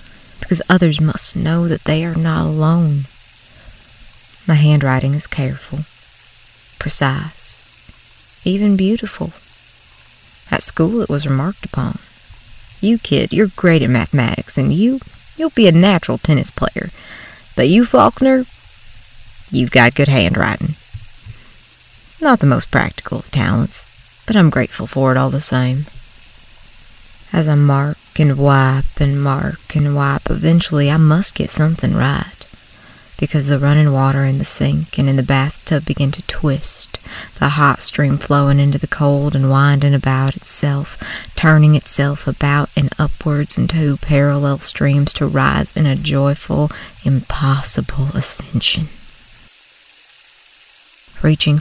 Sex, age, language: female, 30-49, English